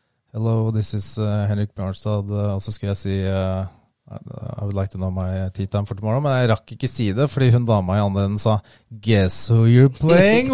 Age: 30-49